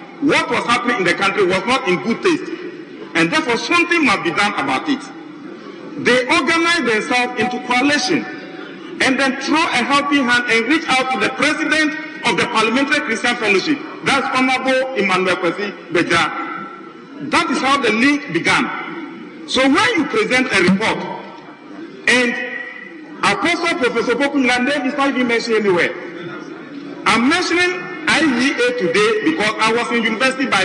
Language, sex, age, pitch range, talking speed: English, male, 50-69, 235-315 Hz, 155 wpm